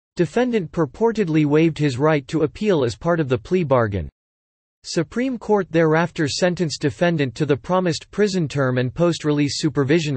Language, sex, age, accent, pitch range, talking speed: English, male, 40-59, American, 140-175 Hz, 155 wpm